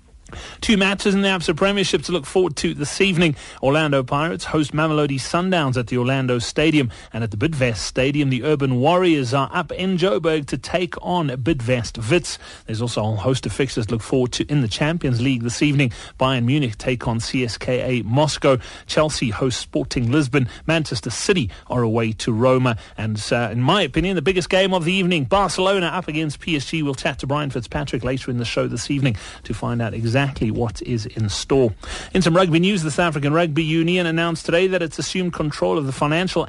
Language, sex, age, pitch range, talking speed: English, male, 30-49, 125-165 Hz, 200 wpm